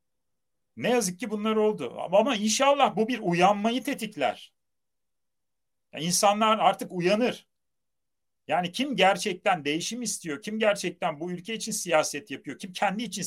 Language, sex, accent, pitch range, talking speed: Turkish, male, native, 145-220 Hz, 135 wpm